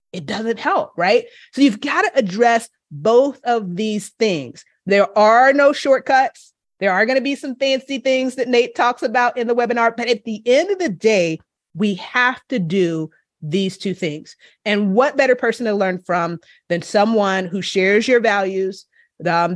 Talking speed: 185 wpm